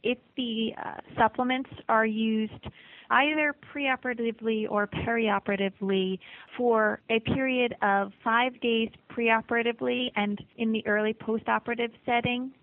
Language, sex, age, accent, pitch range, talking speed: English, female, 30-49, American, 205-245 Hz, 110 wpm